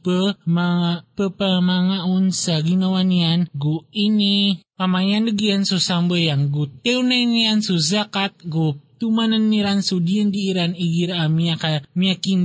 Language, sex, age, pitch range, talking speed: Filipino, male, 20-39, 170-205 Hz, 140 wpm